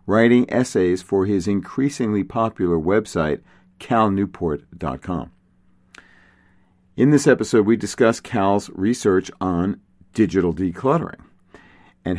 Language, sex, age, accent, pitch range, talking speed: English, male, 50-69, American, 95-125 Hz, 95 wpm